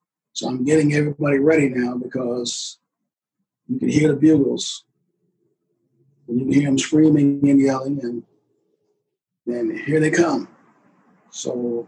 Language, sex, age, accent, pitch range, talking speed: English, male, 50-69, American, 140-185 Hz, 130 wpm